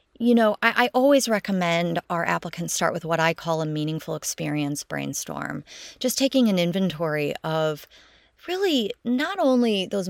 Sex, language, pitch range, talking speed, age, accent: female, English, 160-220 Hz, 155 wpm, 30-49, American